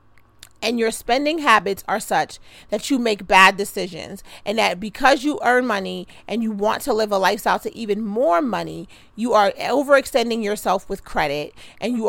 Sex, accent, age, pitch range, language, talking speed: female, American, 30-49, 200-250 Hz, English, 180 wpm